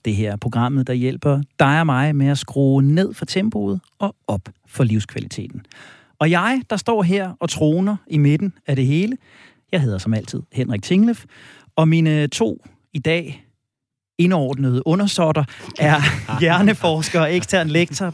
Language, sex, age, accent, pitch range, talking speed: Danish, male, 30-49, native, 130-175 Hz, 160 wpm